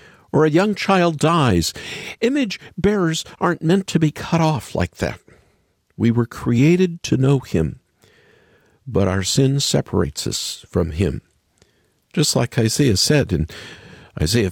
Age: 50-69